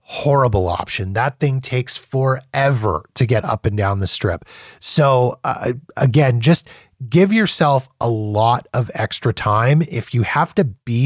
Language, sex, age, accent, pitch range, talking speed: English, male, 30-49, American, 110-140 Hz, 155 wpm